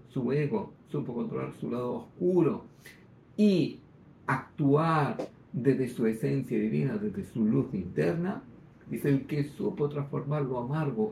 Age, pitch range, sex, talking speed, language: 50-69, 125-155 Hz, male, 130 wpm, Greek